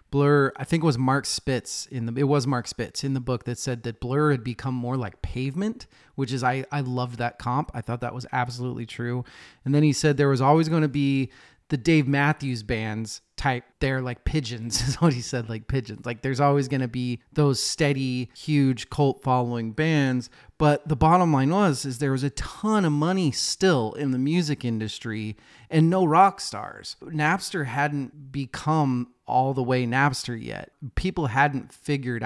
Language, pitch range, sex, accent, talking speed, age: English, 120-150 Hz, male, American, 195 wpm, 30-49